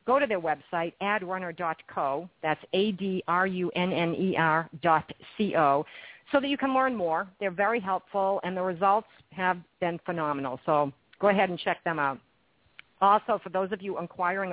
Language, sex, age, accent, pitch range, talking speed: English, female, 50-69, American, 160-195 Hz, 155 wpm